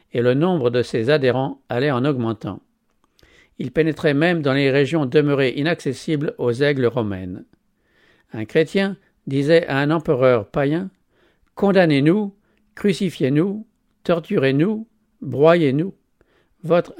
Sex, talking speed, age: male, 115 wpm, 50-69